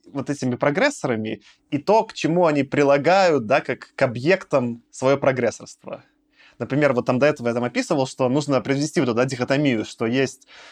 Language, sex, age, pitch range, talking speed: Russian, male, 20-39, 130-175 Hz, 175 wpm